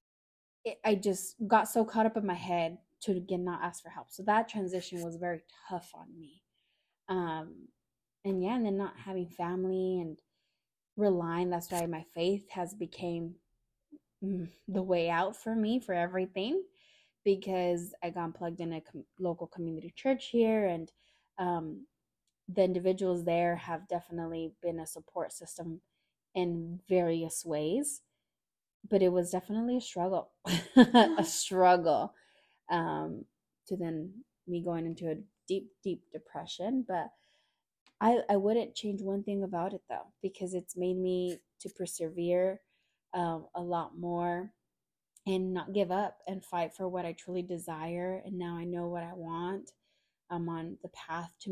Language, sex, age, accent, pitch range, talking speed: English, female, 20-39, American, 170-195 Hz, 155 wpm